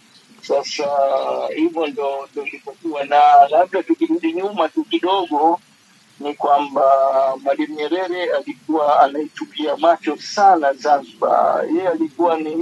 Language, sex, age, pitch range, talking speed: Swahili, male, 50-69, 155-190 Hz, 100 wpm